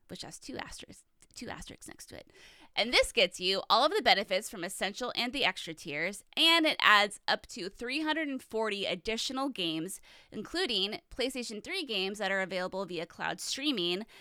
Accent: American